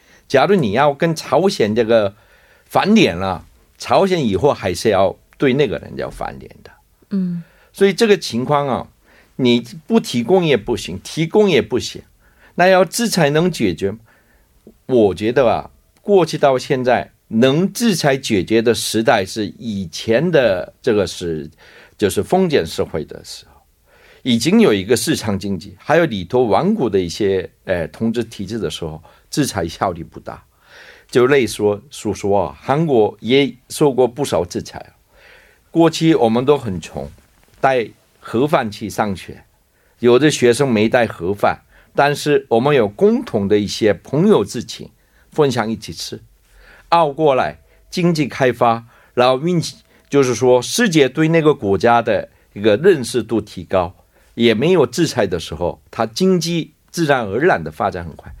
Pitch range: 105-160 Hz